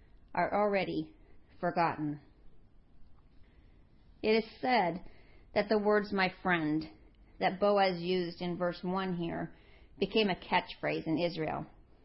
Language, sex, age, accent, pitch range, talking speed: English, female, 40-59, American, 155-205 Hz, 115 wpm